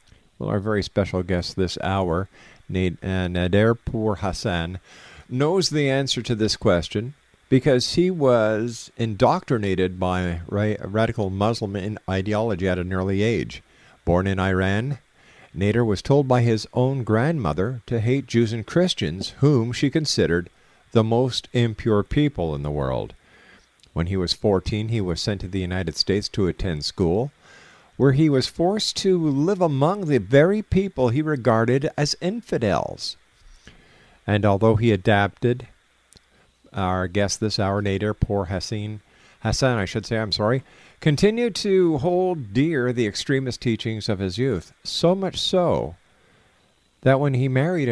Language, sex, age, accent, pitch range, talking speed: English, male, 50-69, American, 95-130 Hz, 145 wpm